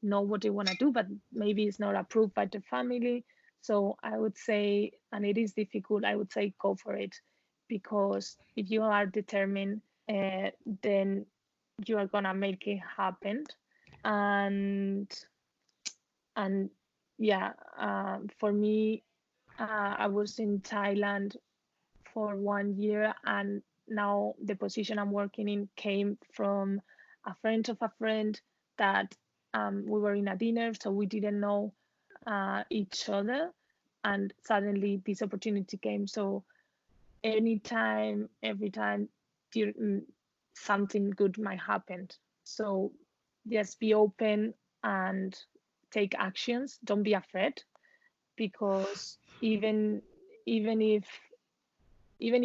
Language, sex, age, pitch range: Vietnamese, female, 20-39, 200-220 Hz